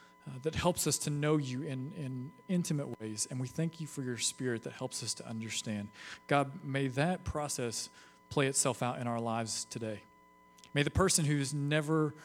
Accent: American